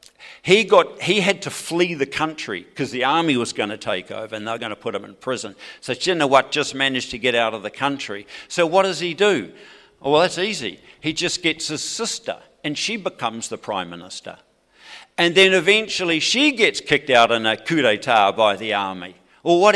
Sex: male